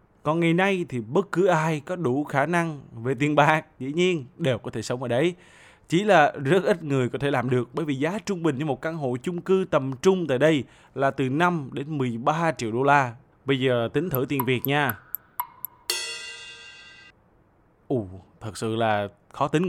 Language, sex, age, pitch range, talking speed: Vietnamese, male, 20-39, 130-170 Hz, 205 wpm